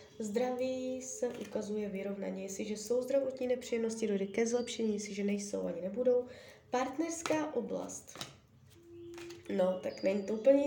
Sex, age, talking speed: female, 20-39, 125 wpm